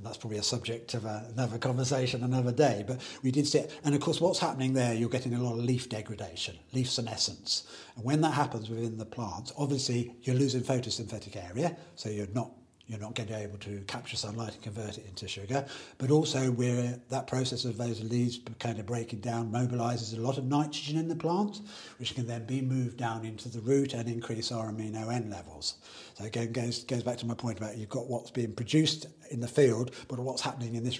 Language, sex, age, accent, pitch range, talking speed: English, male, 50-69, British, 110-130 Hz, 220 wpm